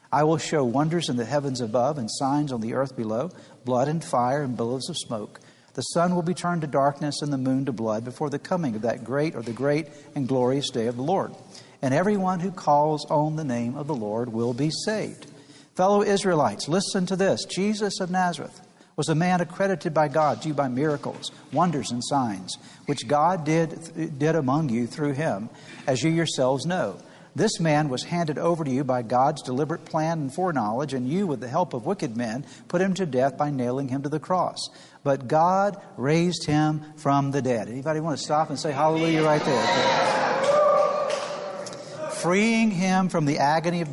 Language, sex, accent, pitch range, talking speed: English, male, American, 135-175 Hz, 200 wpm